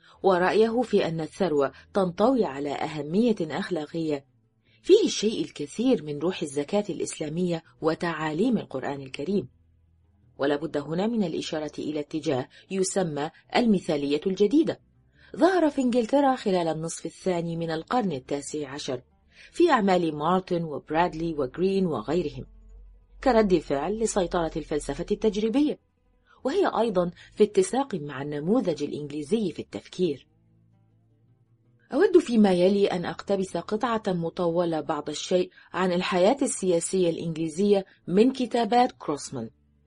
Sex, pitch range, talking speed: female, 150-205 Hz, 110 wpm